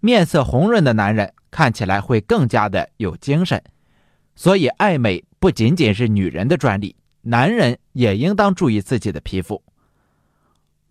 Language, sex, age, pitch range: Chinese, male, 30-49, 100-155 Hz